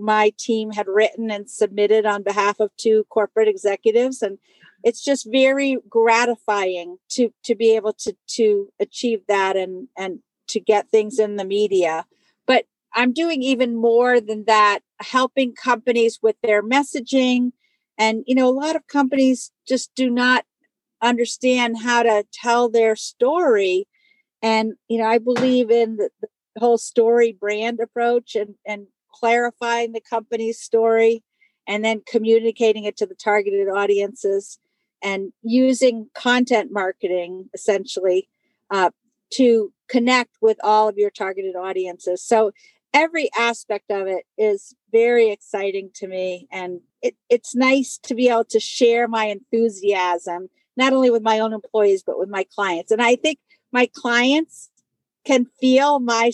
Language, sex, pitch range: English, female, 210-250 Hz